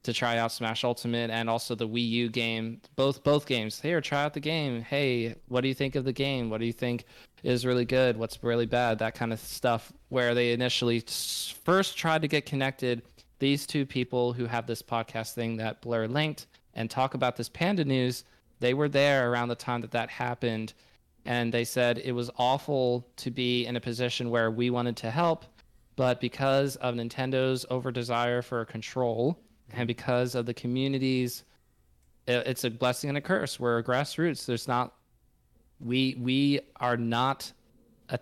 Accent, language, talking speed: American, English, 185 wpm